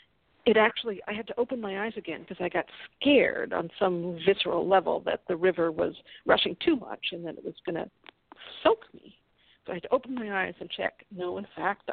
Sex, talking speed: female, 220 wpm